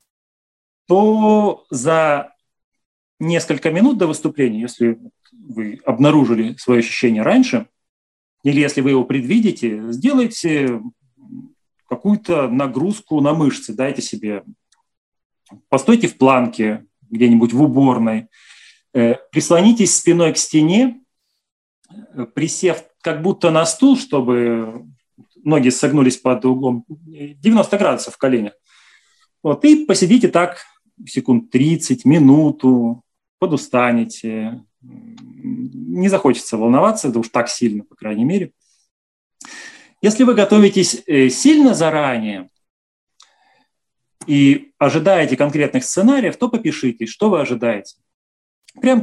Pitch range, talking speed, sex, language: 125-205 Hz, 100 wpm, male, Russian